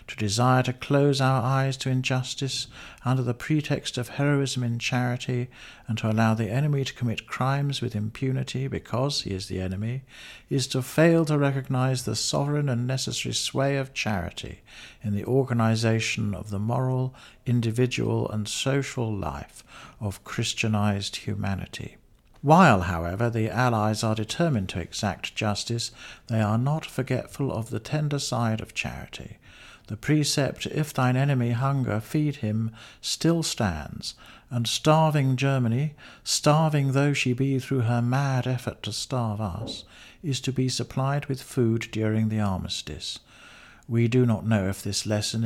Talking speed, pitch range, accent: 150 wpm, 110-135 Hz, British